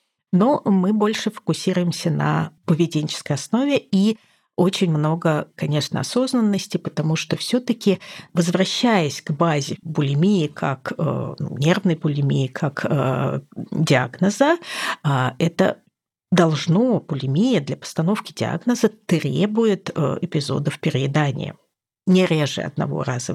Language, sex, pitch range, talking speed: Russian, female, 155-210 Hz, 95 wpm